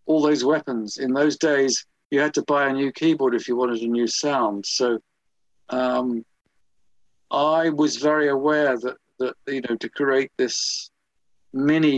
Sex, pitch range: male, 120-145 Hz